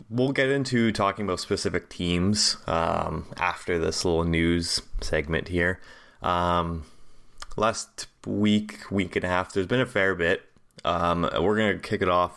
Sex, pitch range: male, 80-100 Hz